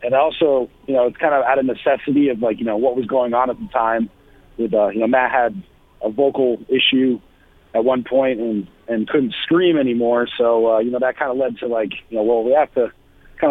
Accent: American